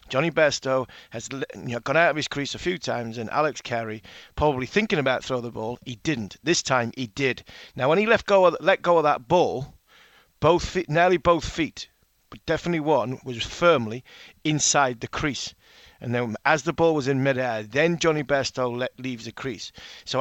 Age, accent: 40-59, British